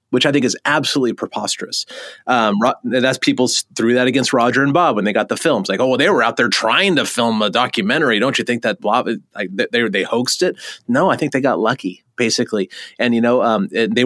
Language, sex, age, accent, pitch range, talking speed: English, male, 30-49, American, 115-150 Hz, 235 wpm